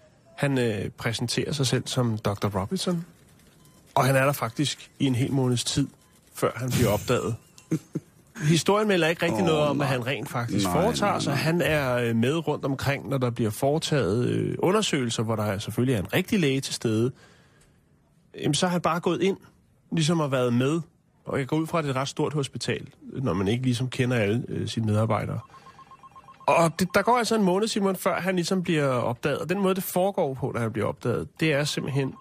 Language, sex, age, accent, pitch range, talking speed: Danish, male, 30-49, native, 120-155 Hz, 205 wpm